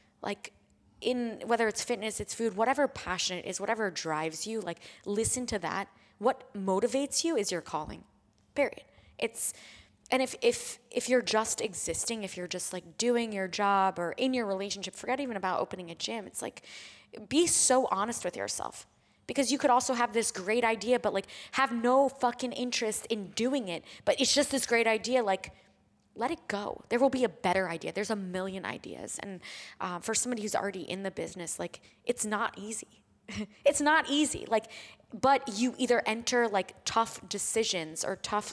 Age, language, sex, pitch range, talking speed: 20-39, English, female, 190-245 Hz, 185 wpm